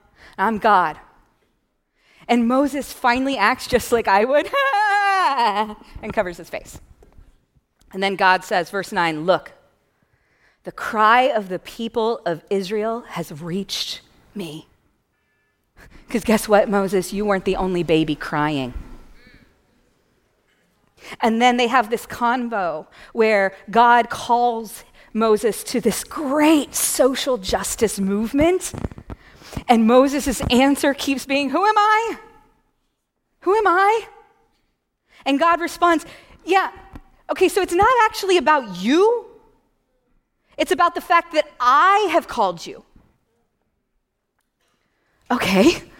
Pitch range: 205-300 Hz